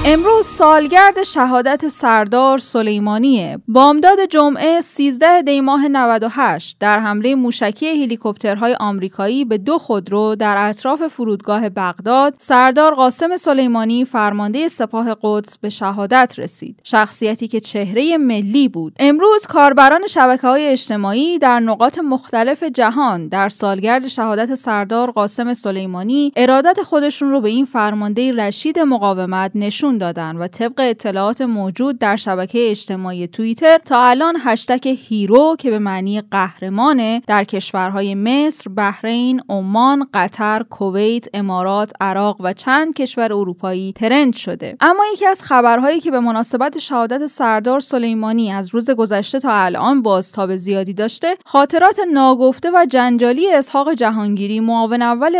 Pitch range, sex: 210-275 Hz, female